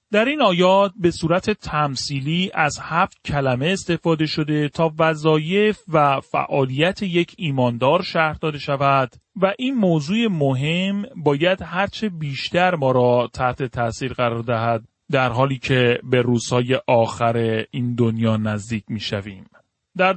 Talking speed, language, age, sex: 135 wpm, Persian, 30-49, male